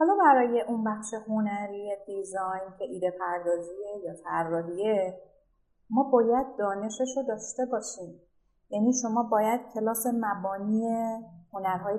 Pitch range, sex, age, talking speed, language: 175-215 Hz, female, 30-49, 105 wpm, Persian